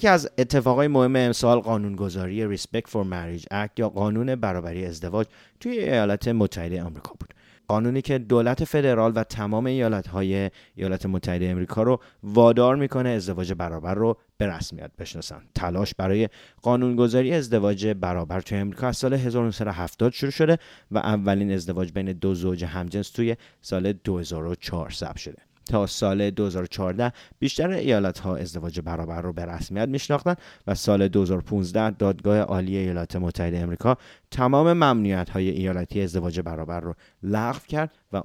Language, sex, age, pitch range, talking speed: English, male, 30-49, 90-120 Hz, 145 wpm